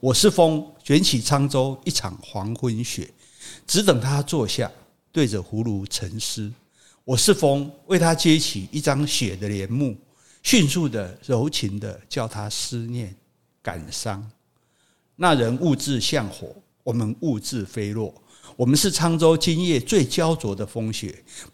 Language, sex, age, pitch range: Chinese, male, 50-69, 105-145 Hz